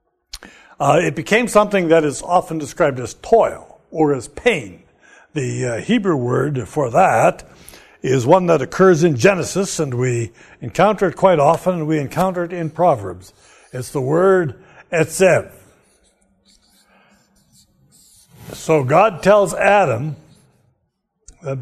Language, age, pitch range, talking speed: English, 60-79, 135-185 Hz, 130 wpm